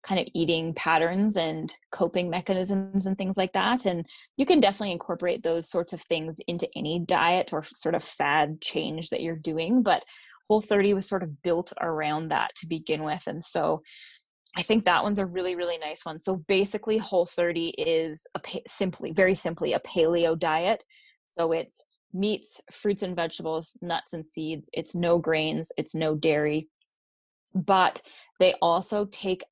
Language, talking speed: English, 170 wpm